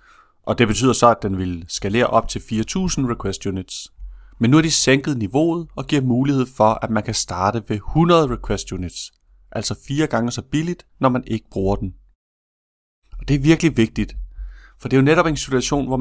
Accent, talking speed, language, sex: native, 200 wpm, Danish, male